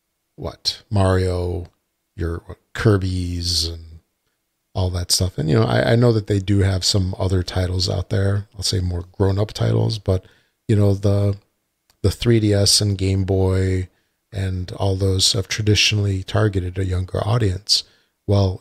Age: 40-59